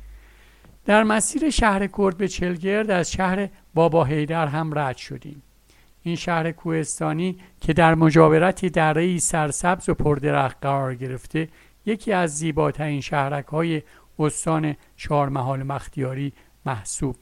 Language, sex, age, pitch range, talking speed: Persian, male, 60-79, 145-180 Hz, 120 wpm